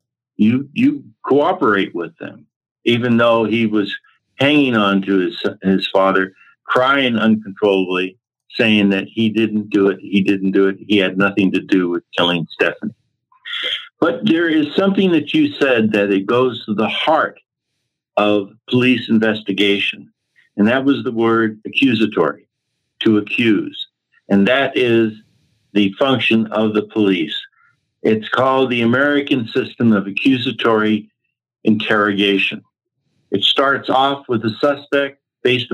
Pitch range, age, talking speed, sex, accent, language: 105-130 Hz, 60-79, 140 wpm, male, American, English